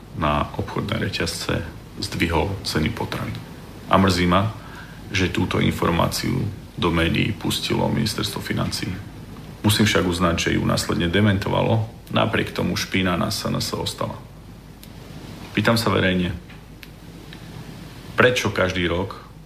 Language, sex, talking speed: Slovak, male, 110 wpm